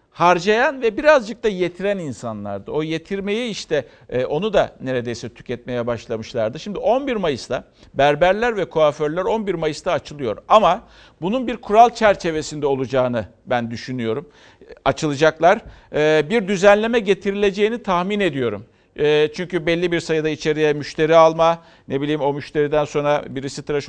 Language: Turkish